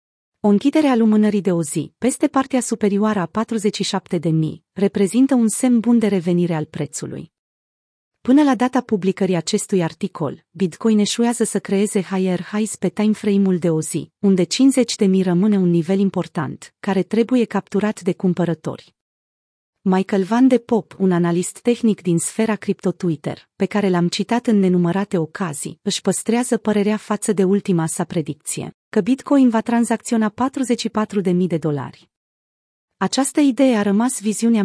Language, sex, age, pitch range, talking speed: Romanian, female, 30-49, 180-225 Hz, 145 wpm